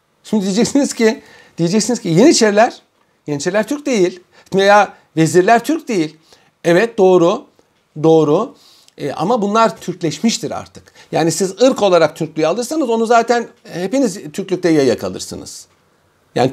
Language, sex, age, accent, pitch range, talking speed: Turkish, male, 50-69, native, 160-225 Hz, 125 wpm